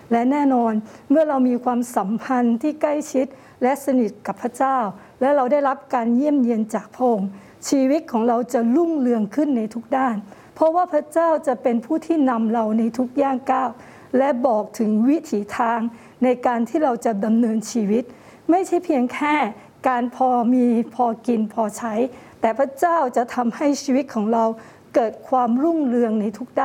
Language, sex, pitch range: Thai, female, 225-275 Hz